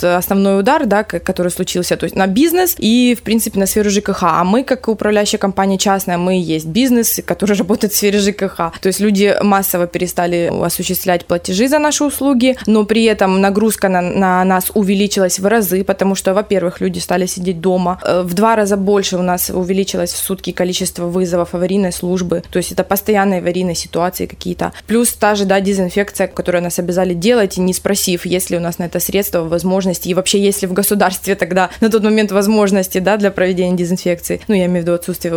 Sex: female